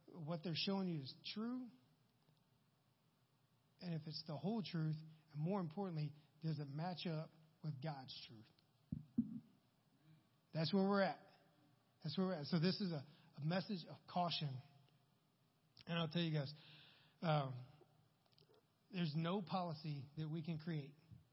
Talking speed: 145 wpm